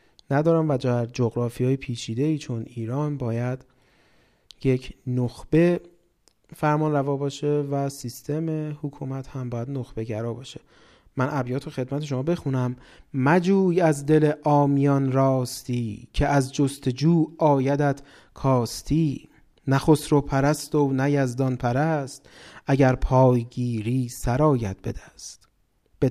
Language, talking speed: Persian, 110 wpm